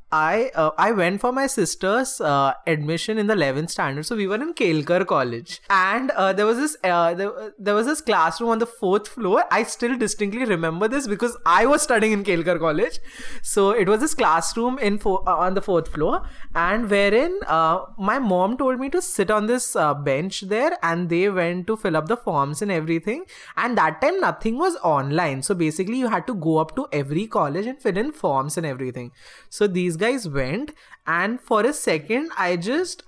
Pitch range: 170-250 Hz